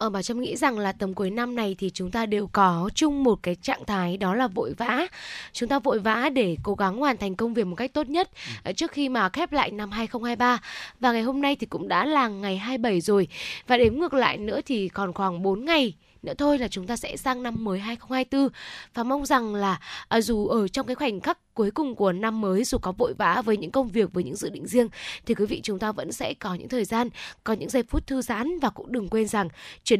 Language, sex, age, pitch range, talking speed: Vietnamese, female, 10-29, 200-265 Hz, 260 wpm